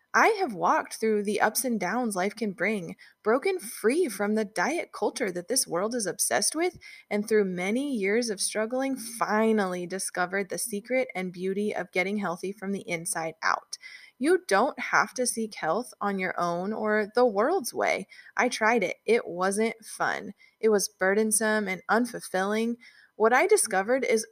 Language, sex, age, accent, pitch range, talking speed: English, female, 20-39, American, 185-240 Hz, 175 wpm